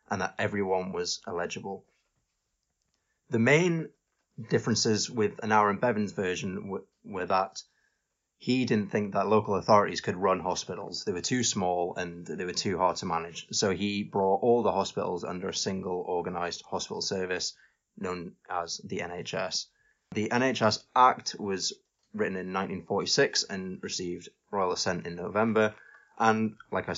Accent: British